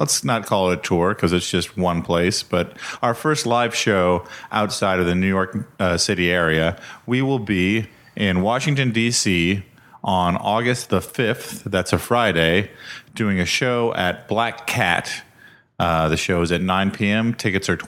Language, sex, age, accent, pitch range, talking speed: English, male, 30-49, American, 85-105 Hz, 180 wpm